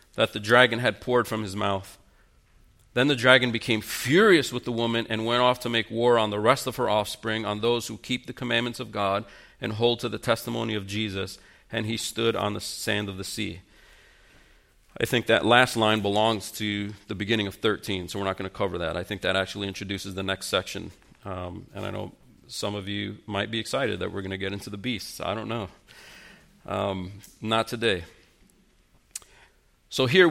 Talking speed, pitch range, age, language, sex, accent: 205 wpm, 105-125 Hz, 40-59, English, male, American